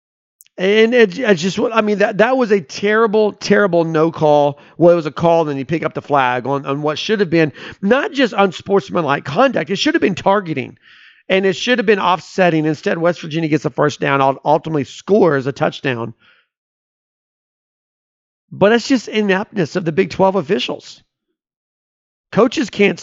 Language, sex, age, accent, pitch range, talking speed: English, male, 40-59, American, 150-215 Hz, 180 wpm